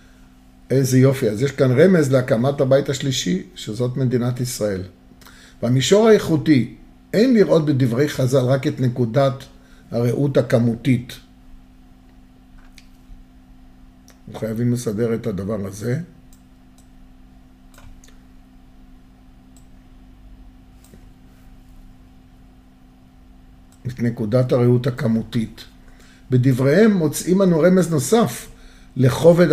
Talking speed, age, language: 75 wpm, 50-69, Hebrew